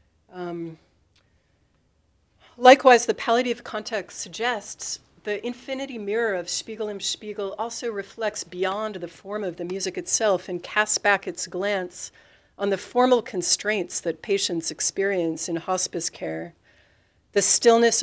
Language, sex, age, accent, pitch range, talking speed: English, female, 40-59, American, 170-205 Hz, 130 wpm